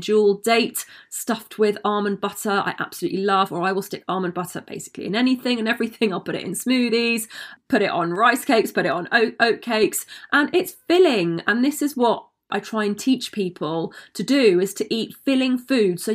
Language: English